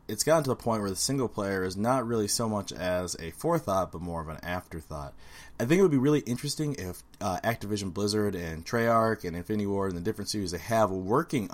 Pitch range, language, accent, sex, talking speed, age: 85-115 Hz, English, American, male, 235 wpm, 20-39